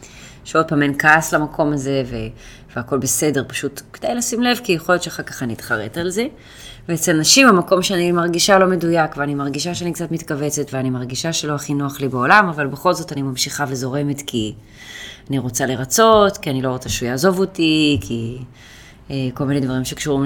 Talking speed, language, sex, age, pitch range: 185 wpm, Hebrew, female, 20-39, 135-160 Hz